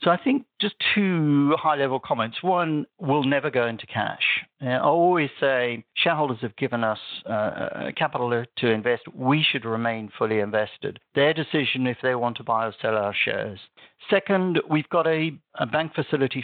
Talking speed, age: 175 wpm, 60-79